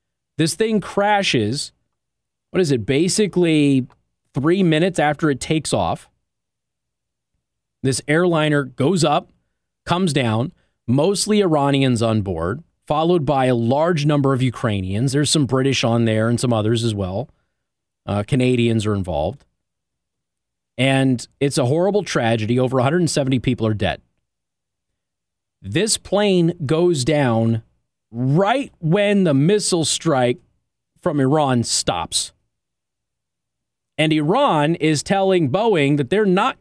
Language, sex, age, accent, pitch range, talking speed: English, male, 30-49, American, 120-175 Hz, 120 wpm